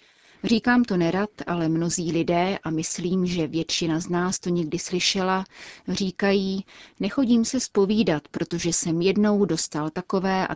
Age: 30-49